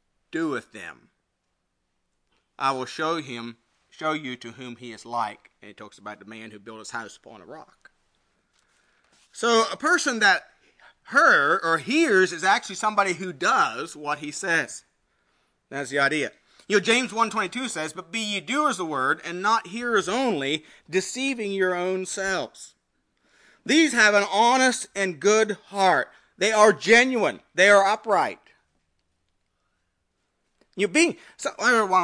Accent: American